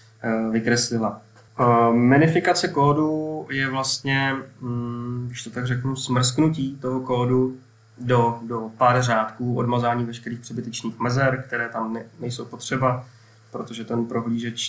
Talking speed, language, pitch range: 110 wpm, Czech, 115-125 Hz